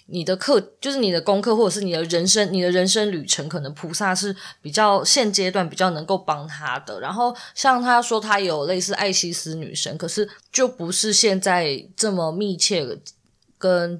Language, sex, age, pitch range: Chinese, female, 20-39, 170-225 Hz